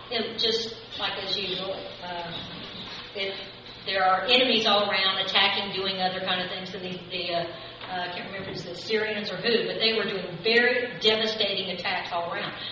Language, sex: English, female